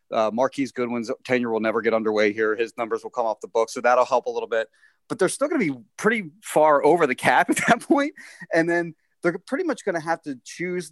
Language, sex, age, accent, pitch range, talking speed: English, male, 30-49, American, 115-160 Hz, 260 wpm